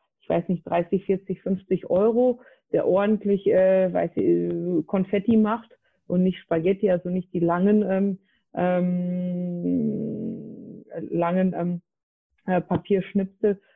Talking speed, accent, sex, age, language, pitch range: 100 wpm, German, female, 30-49, English, 175-195 Hz